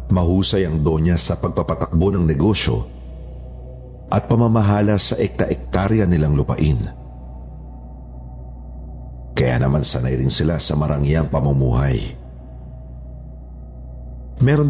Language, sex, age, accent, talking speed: Filipino, male, 50-69, native, 90 wpm